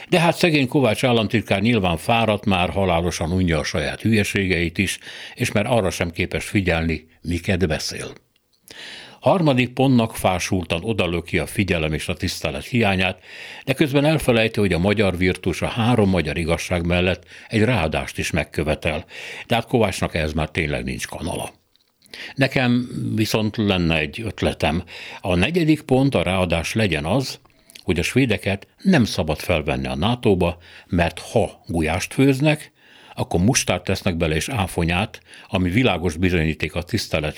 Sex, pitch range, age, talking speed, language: male, 85-120 Hz, 60-79, 145 wpm, Hungarian